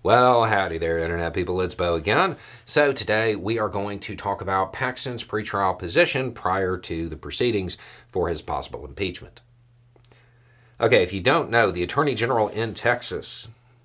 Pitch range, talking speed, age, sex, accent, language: 95-120 Hz, 160 wpm, 50-69, male, American, English